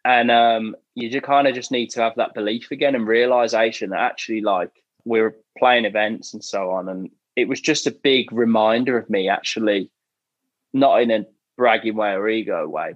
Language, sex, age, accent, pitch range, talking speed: English, male, 20-39, British, 110-130 Hz, 200 wpm